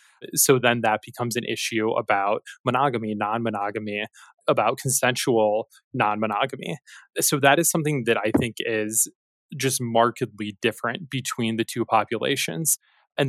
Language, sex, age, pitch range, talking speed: English, male, 20-39, 110-130 Hz, 135 wpm